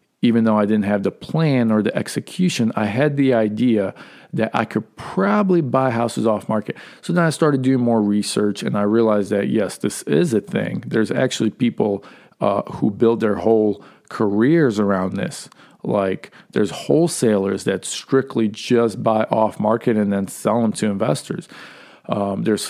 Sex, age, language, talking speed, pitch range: male, 40-59, English, 175 wpm, 105-140 Hz